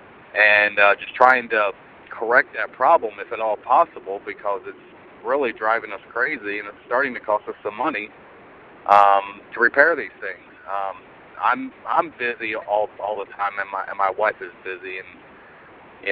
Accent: American